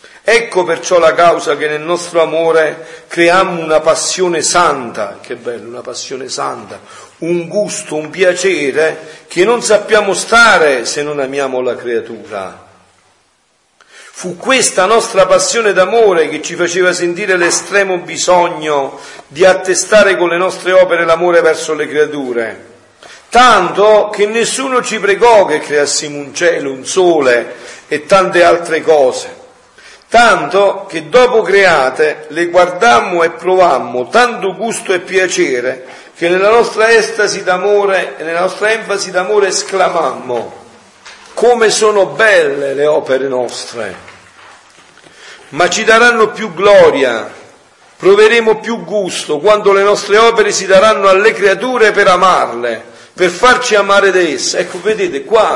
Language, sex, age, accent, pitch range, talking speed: Italian, male, 50-69, native, 160-215 Hz, 130 wpm